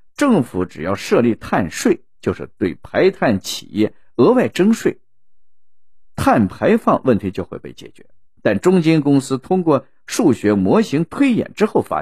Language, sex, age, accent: Chinese, male, 50-69, native